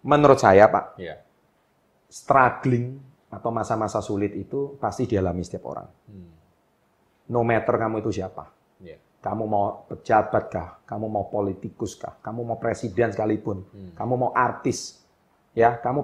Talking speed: 120 wpm